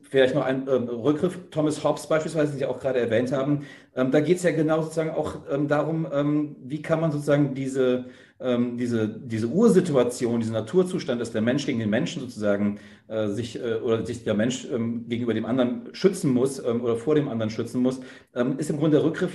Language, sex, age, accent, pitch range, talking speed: German, male, 40-59, German, 115-150 Hz, 210 wpm